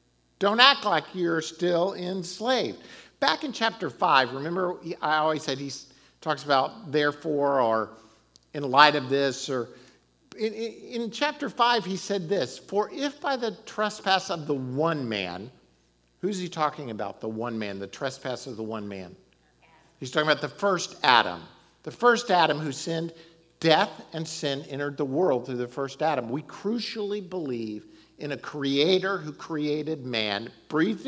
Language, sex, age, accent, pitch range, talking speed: English, male, 50-69, American, 120-185 Hz, 165 wpm